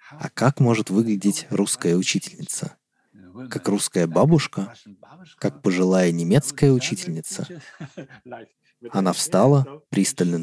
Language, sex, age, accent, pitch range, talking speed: Russian, male, 30-49, native, 90-125 Hz, 90 wpm